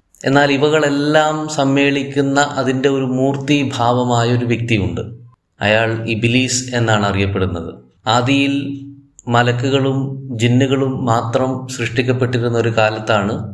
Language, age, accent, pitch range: Malayalam, 20-39, native, 110-130 Hz